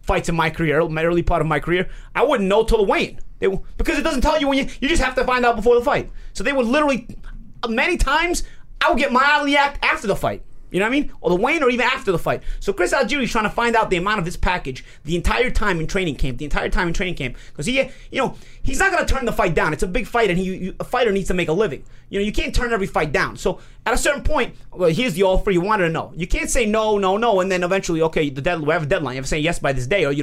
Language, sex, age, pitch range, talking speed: English, male, 30-49, 160-235 Hz, 310 wpm